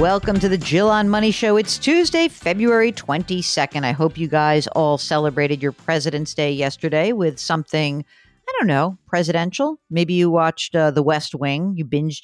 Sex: female